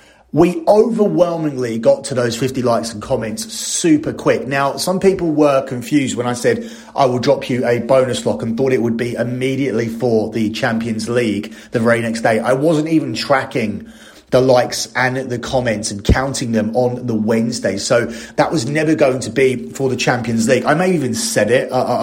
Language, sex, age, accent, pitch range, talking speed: English, male, 30-49, British, 115-135 Hz, 200 wpm